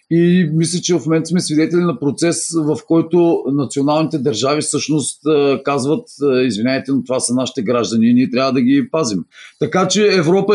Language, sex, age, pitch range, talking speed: Bulgarian, male, 40-59, 135-180 Hz, 170 wpm